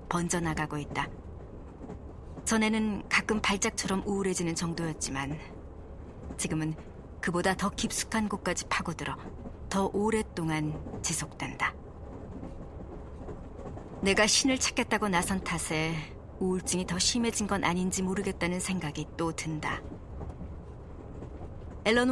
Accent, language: native, Korean